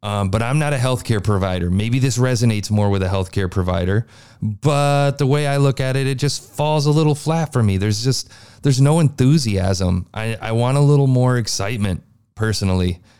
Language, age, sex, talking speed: English, 30-49, male, 195 wpm